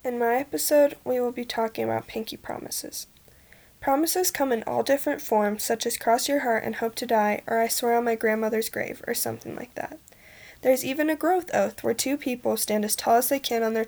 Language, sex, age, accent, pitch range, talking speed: English, female, 10-29, American, 220-275 Hz, 225 wpm